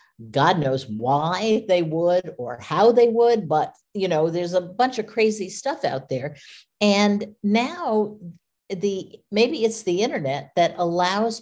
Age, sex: 50-69, female